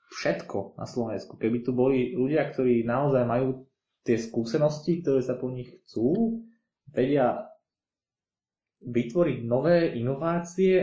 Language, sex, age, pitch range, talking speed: Slovak, male, 20-39, 115-140 Hz, 115 wpm